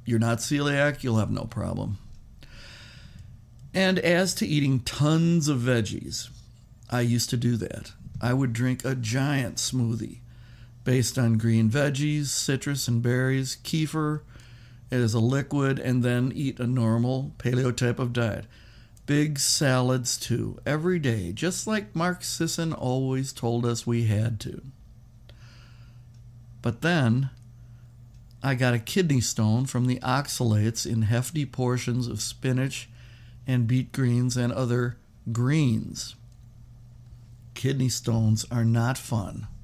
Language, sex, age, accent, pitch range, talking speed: English, male, 60-79, American, 115-130 Hz, 130 wpm